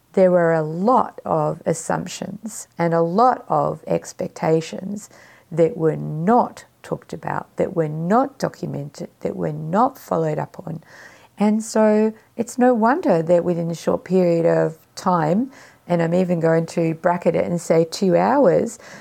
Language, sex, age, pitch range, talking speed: English, female, 50-69, 165-220 Hz, 155 wpm